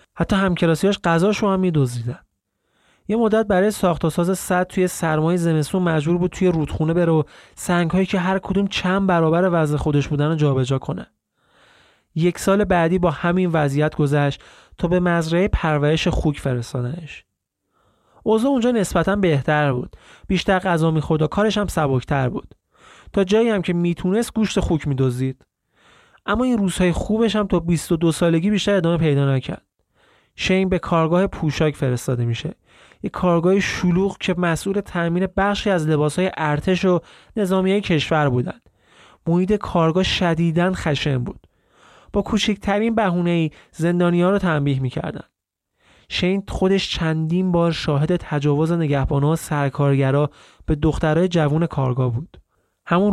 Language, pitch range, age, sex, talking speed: Persian, 155-190 Hz, 30-49, male, 140 wpm